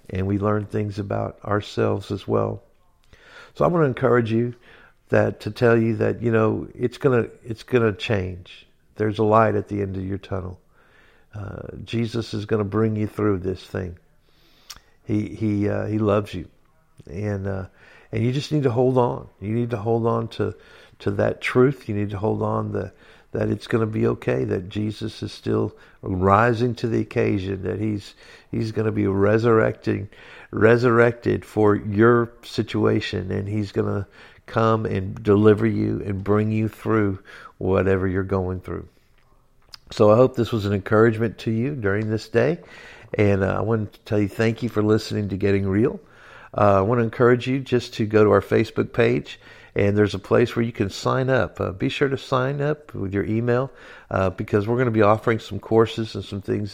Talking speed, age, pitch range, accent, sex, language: 195 wpm, 60-79, 100-115 Hz, American, male, English